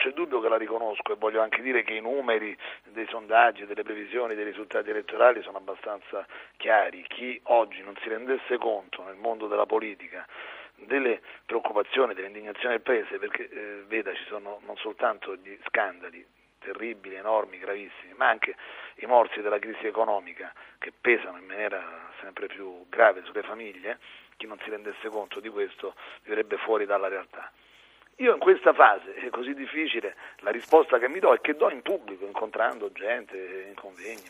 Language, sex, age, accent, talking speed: Italian, male, 40-59, native, 170 wpm